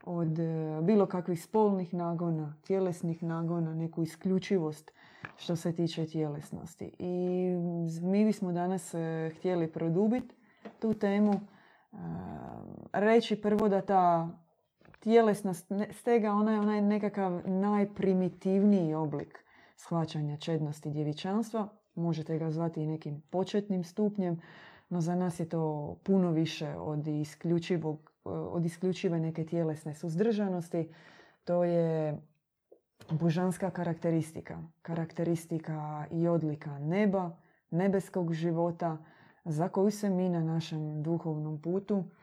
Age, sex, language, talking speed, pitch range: 20-39, female, Croatian, 105 wpm, 165-195 Hz